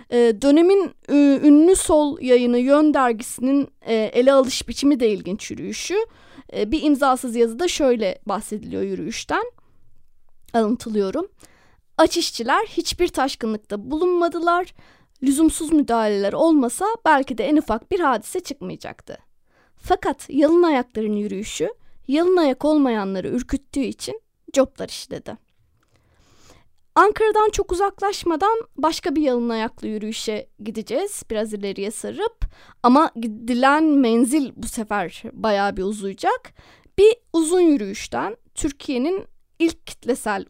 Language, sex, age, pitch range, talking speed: Turkish, female, 30-49, 230-335 Hz, 105 wpm